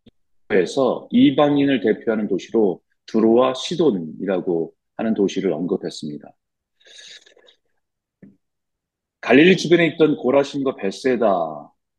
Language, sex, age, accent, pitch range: Korean, male, 40-59, native, 110-150 Hz